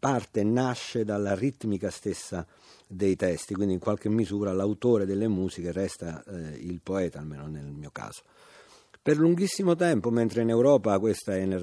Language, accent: Italian, native